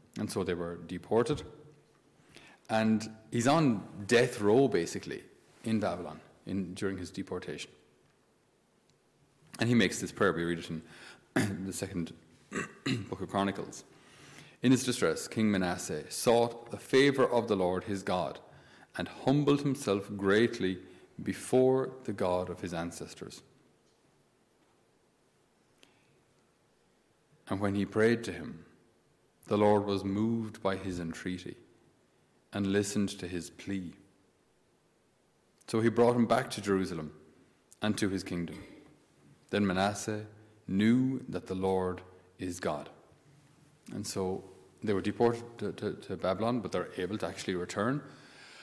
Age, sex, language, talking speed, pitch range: 40-59, male, English, 130 wpm, 90-115 Hz